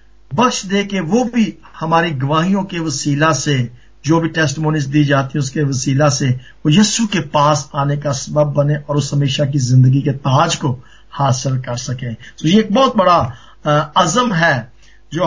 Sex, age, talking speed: male, 50-69, 175 wpm